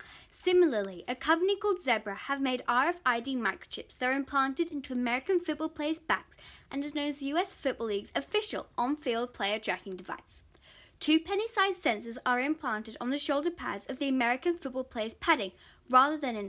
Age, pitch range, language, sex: 10-29, 240-320 Hz, English, female